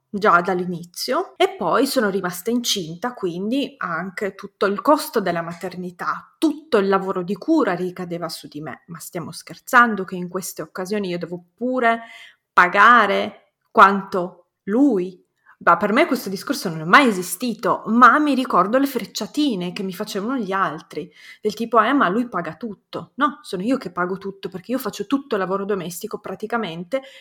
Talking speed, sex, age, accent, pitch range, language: 170 wpm, female, 30-49, native, 185-240 Hz, Italian